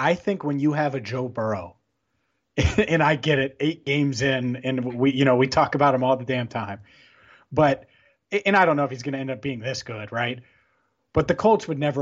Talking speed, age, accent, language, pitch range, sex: 235 wpm, 30-49, American, English, 120-145 Hz, male